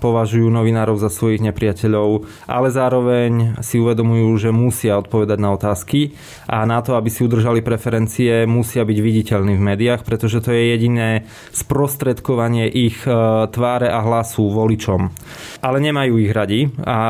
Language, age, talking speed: Slovak, 20-39, 145 wpm